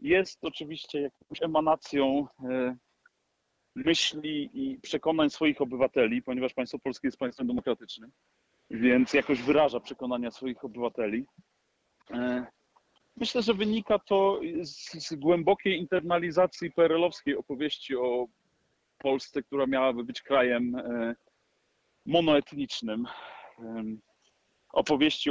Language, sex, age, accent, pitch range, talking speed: Polish, male, 40-59, native, 125-170 Hz, 90 wpm